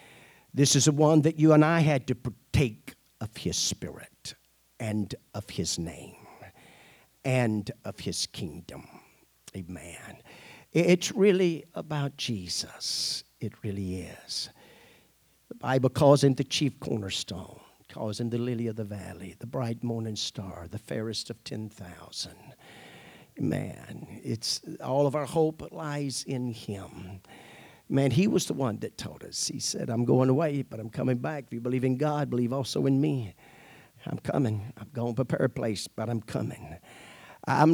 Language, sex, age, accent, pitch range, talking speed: English, male, 50-69, American, 110-150 Hz, 155 wpm